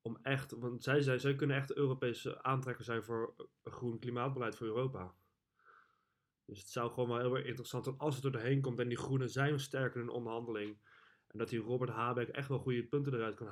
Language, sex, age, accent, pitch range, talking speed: Dutch, male, 20-39, Dutch, 110-130 Hz, 215 wpm